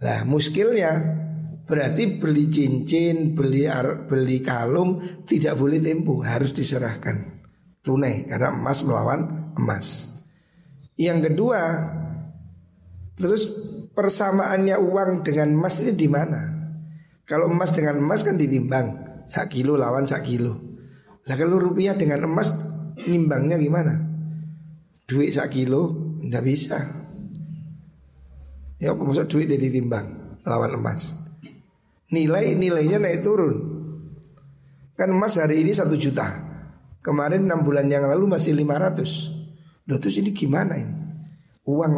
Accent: native